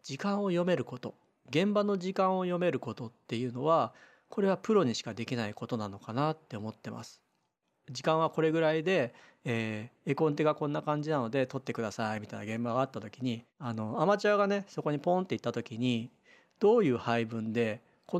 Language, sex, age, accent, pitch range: Japanese, male, 40-59, native, 120-190 Hz